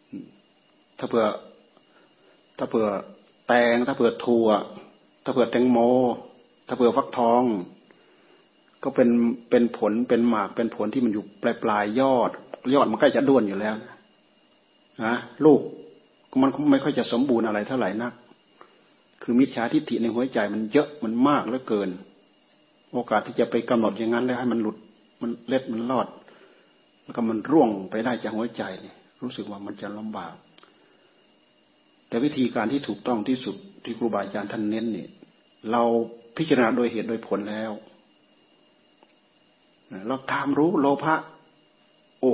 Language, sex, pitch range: Thai, male, 110-130 Hz